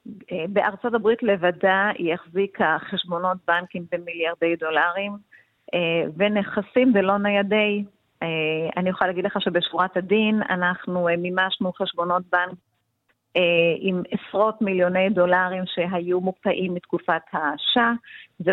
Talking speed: 100 wpm